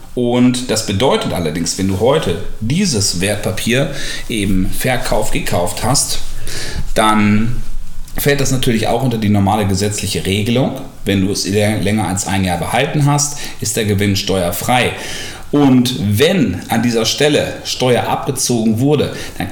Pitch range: 100-135 Hz